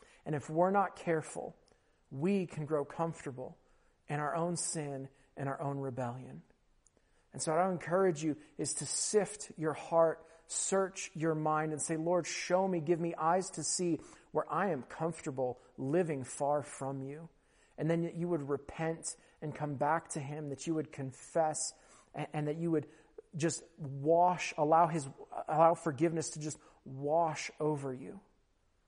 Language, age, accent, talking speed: English, 40-59, American, 160 wpm